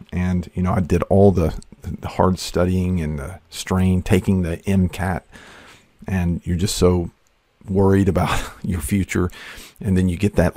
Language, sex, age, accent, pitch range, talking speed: English, male, 50-69, American, 80-95 Hz, 165 wpm